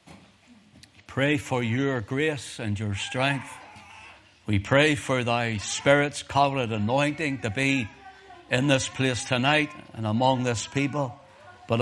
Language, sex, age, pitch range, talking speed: English, male, 60-79, 105-140 Hz, 125 wpm